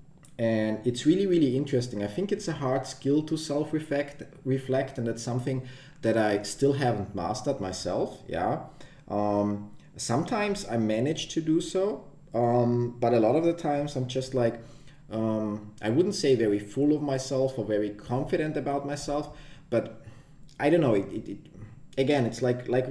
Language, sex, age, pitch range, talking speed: English, male, 20-39, 105-140 Hz, 175 wpm